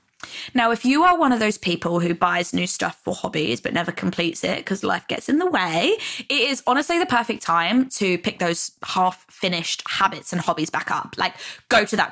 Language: English